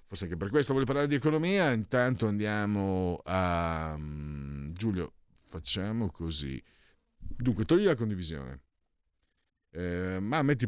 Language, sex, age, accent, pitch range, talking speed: Italian, male, 50-69, native, 80-110 Hz, 120 wpm